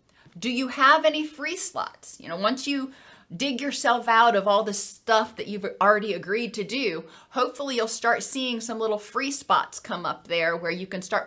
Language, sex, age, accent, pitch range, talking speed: English, female, 30-49, American, 205-275 Hz, 200 wpm